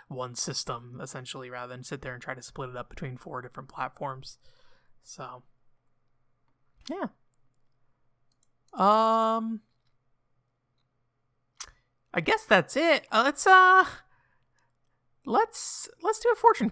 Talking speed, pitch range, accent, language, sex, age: 115 wpm, 135-185 Hz, American, English, male, 30-49